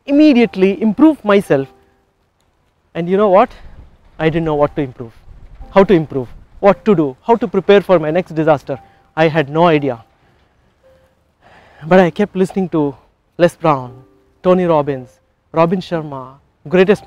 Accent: Indian